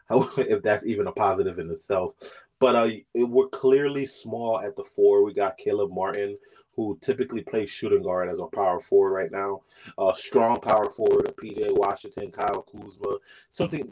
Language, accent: English, American